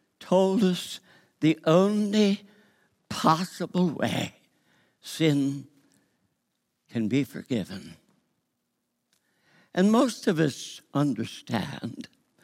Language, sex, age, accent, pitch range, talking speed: English, male, 60-79, American, 150-200 Hz, 70 wpm